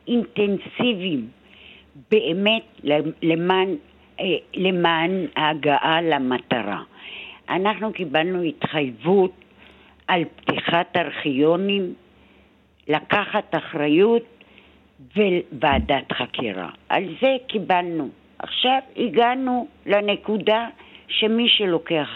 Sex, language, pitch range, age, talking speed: female, Hebrew, 160-215 Hz, 60-79, 65 wpm